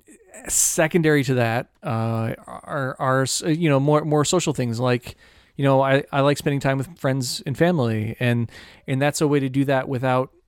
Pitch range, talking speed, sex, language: 115-140 Hz, 190 wpm, male, English